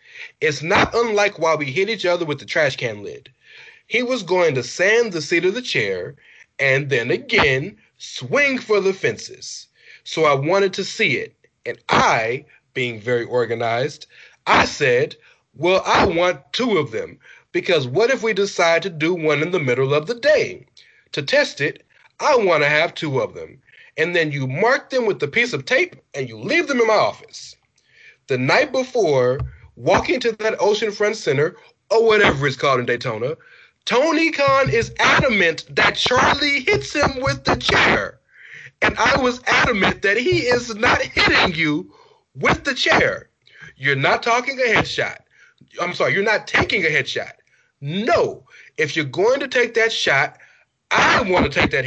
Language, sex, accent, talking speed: English, male, American, 175 wpm